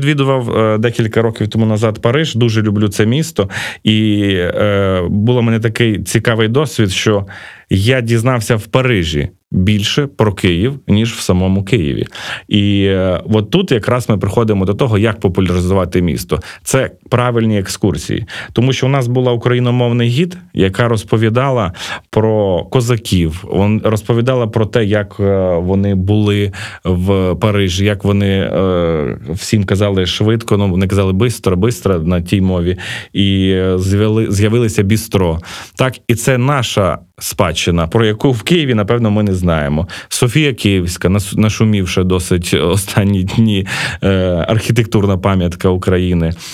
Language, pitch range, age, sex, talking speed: Ukrainian, 95-115 Hz, 30-49, male, 130 wpm